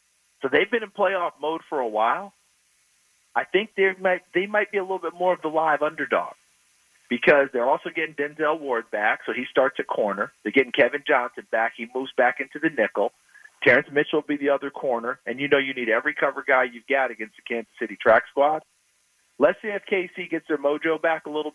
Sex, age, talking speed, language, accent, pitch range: male, 40-59, 225 wpm, English, American, 130-175 Hz